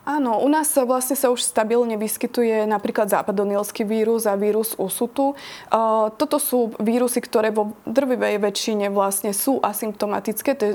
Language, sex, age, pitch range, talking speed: Slovak, female, 20-39, 205-235 Hz, 140 wpm